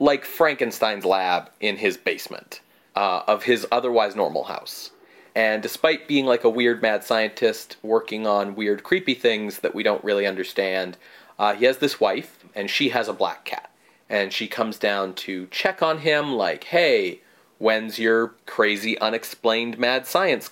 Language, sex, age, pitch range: English, male, 30-49, 105-135 Hz